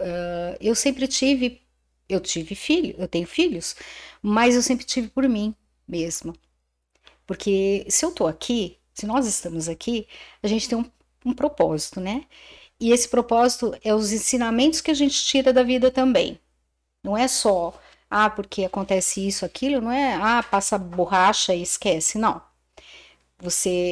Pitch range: 190-260 Hz